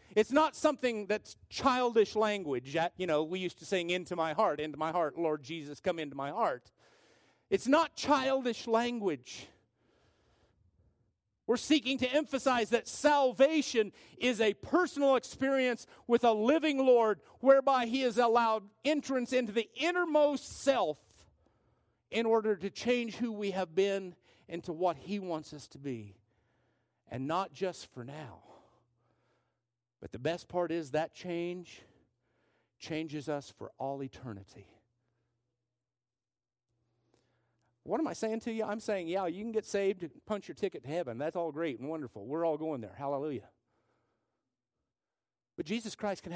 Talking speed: 150 wpm